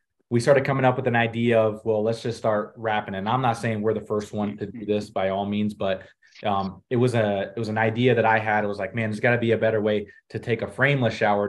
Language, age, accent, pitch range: English, 20-39, American, 100-115 Hz